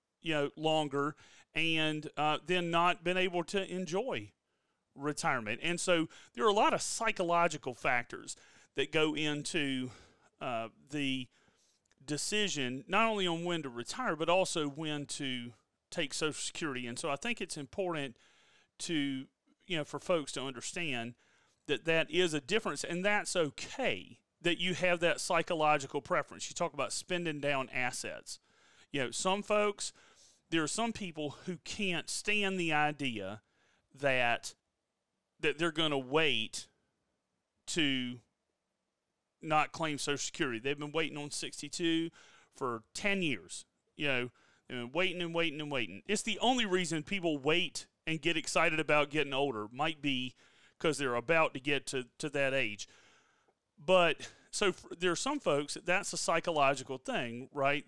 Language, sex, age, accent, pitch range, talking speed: English, male, 40-59, American, 135-175 Hz, 155 wpm